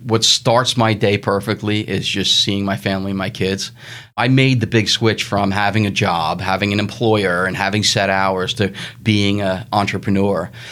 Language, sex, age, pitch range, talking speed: English, male, 30-49, 100-115 Hz, 185 wpm